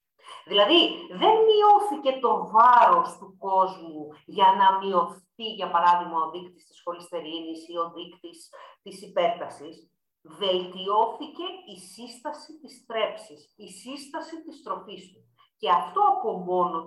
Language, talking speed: Greek, 140 wpm